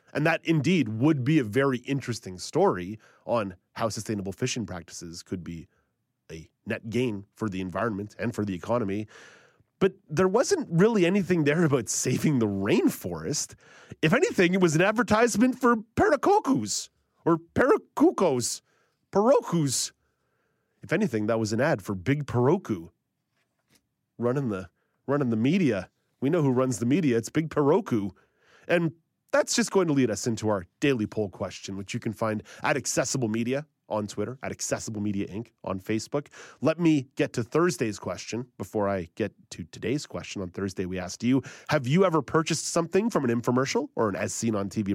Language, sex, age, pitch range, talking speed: English, male, 30-49, 105-160 Hz, 165 wpm